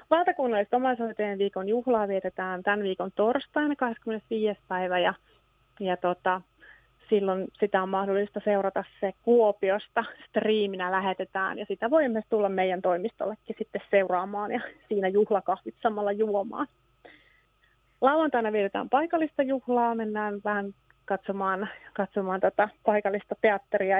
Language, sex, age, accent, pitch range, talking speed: Finnish, female, 30-49, native, 195-230 Hz, 115 wpm